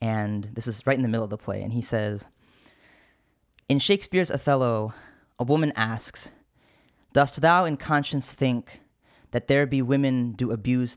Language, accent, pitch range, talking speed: English, American, 115-150 Hz, 165 wpm